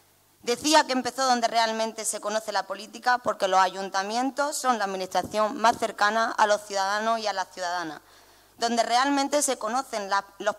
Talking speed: 170 wpm